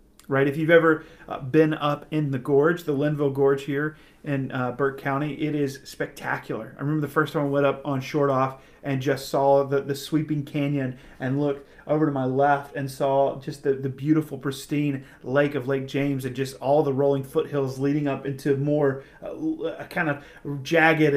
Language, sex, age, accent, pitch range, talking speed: English, male, 40-59, American, 130-150 Hz, 195 wpm